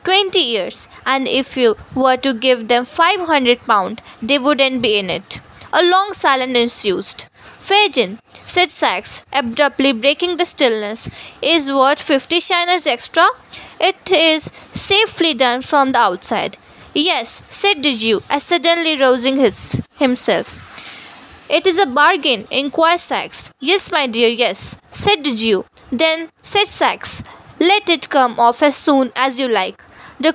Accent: native